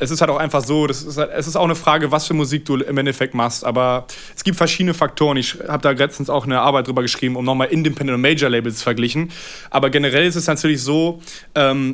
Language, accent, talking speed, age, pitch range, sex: German, German, 250 wpm, 20-39, 135-155 Hz, male